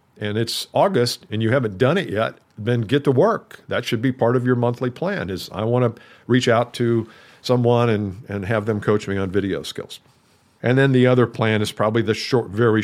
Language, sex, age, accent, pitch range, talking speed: English, male, 50-69, American, 105-130 Hz, 225 wpm